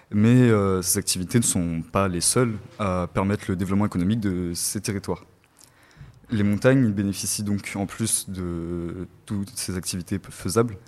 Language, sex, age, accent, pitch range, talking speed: French, male, 20-39, French, 90-110 Hz, 155 wpm